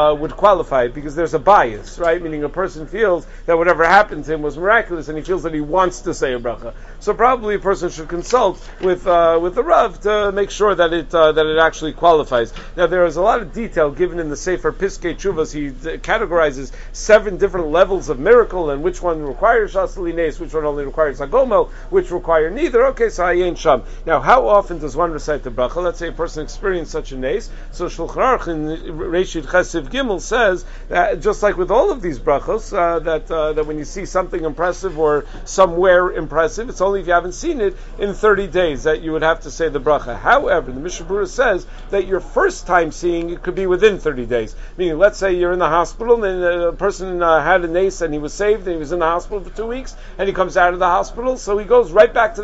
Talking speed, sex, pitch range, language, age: 235 wpm, male, 160-205 Hz, English, 50-69